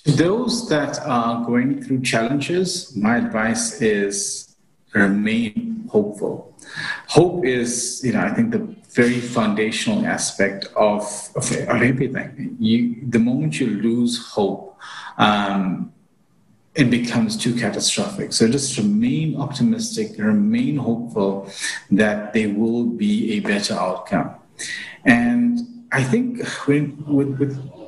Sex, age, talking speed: male, 40-59, 120 wpm